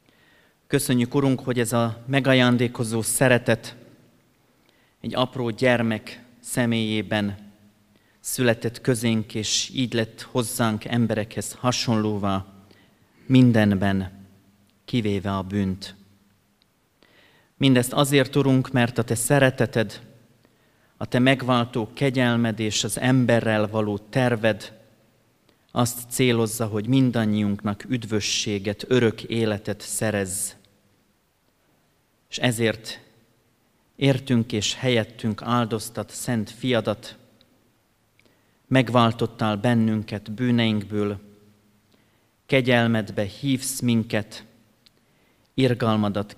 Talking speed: 80 wpm